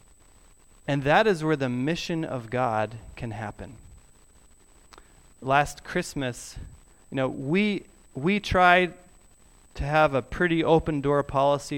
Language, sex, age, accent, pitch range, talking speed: English, male, 30-49, American, 125-155 Hz, 120 wpm